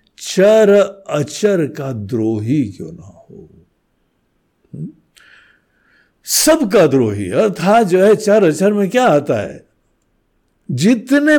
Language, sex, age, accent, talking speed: Hindi, male, 60-79, native, 110 wpm